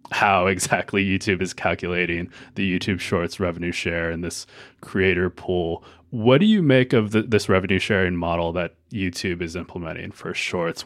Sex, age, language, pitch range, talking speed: male, 20-39, English, 90-105 Hz, 160 wpm